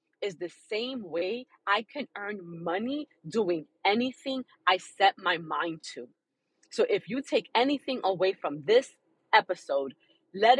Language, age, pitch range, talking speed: English, 30-49, 175-245 Hz, 140 wpm